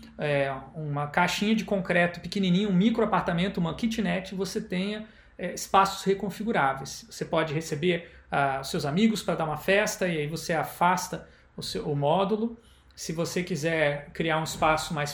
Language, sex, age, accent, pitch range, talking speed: Portuguese, male, 40-59, Brazilian, 155-210 Hz, 145 wpm